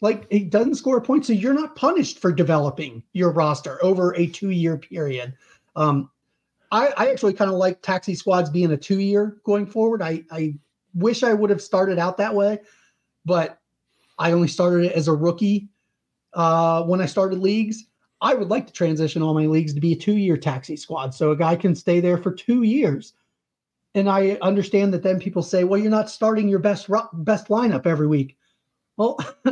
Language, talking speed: English, 195 wpm